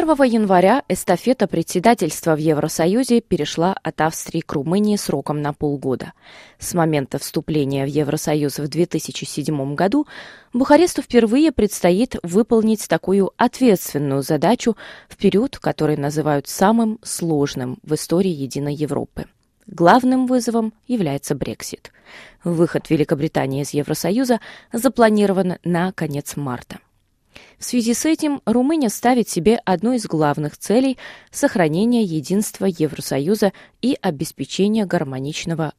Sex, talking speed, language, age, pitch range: female, 115 wpm, Russian, 20-39, 155-225 Hz